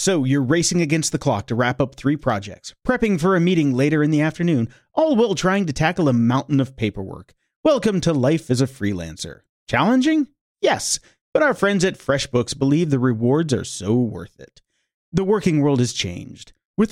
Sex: male